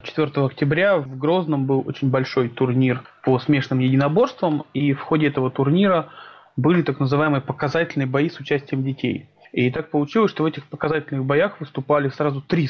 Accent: native